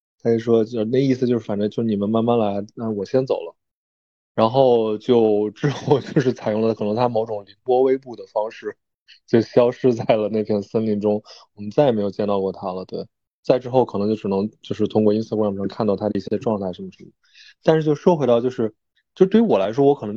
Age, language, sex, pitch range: 20-39, Chinese, male, 105-140 Hz